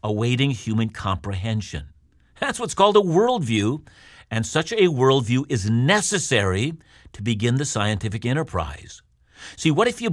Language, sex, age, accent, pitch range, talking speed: English, male, 50-69, American, 115-170 Hz, 135 wpm